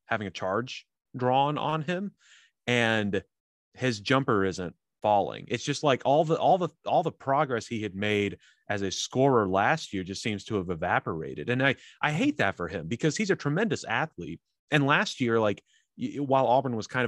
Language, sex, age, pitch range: English, male, 30-49, 100-135 Hz